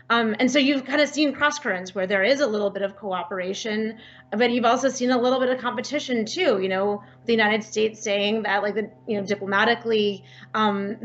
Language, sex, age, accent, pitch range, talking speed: English, female, 30-49, American, 205-245 Hz, 215 wpm